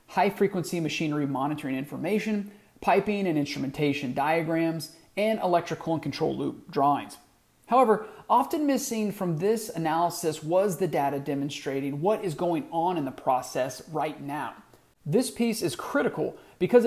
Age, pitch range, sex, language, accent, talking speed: 30-49, 150-200 Hz, male, English, American, 135 wpm